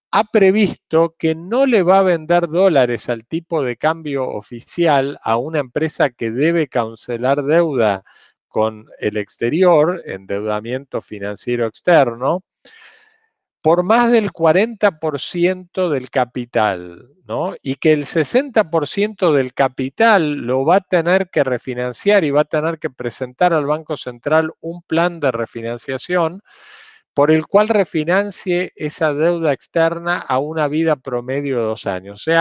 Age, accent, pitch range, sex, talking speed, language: 40-59, Argentinian, 120-175 Hz, male, 140 wpm, Spanish